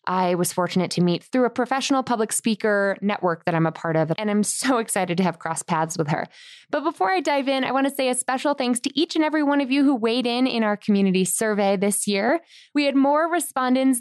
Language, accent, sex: English, American, female